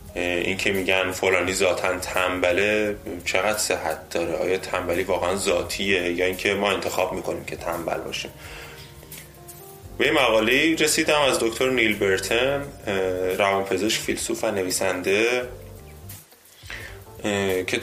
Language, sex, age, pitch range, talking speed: Persian, male, 20-39, 95-115 Hz, 120 wpm